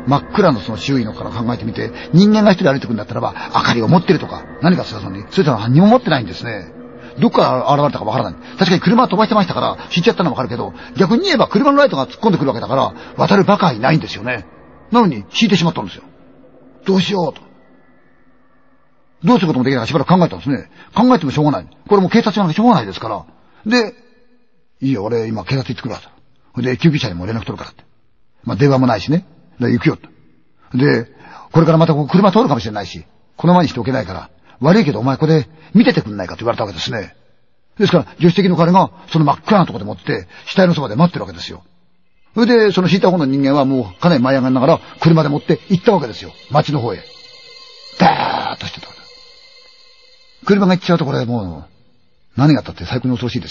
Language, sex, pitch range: Chinese, male, 125-205 Hz